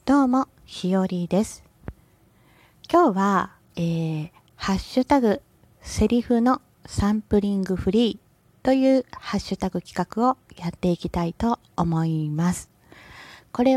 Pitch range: 175-245 Hz